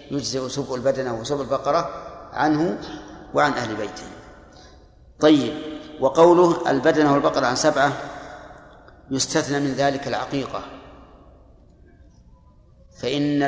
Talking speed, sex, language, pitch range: 90 wpm, male, Arabic, 90-145 Hz